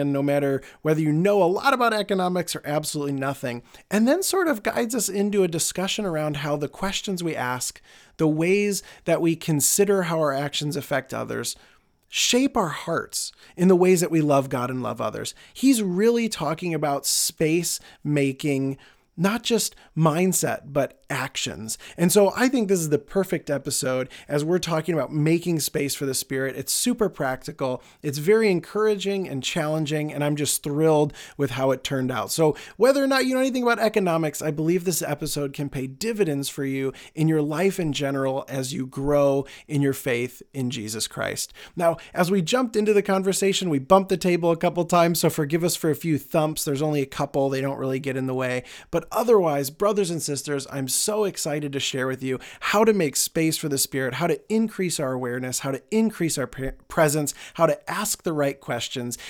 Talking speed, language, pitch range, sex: 200 wpm, English, 135-185 Hz, male